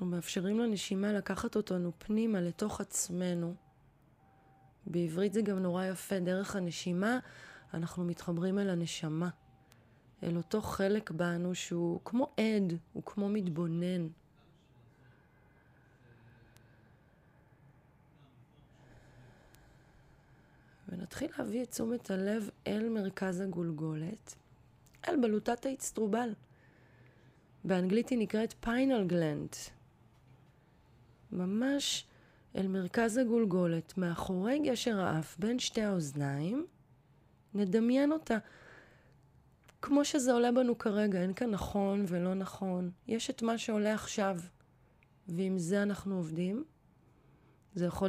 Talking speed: 95 wpm